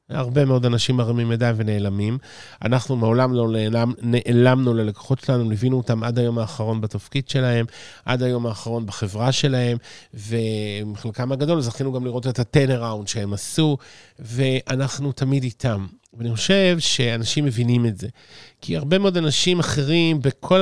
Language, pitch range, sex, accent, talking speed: Hebrew, 120-155 Hz, male, Italian, 145 wpm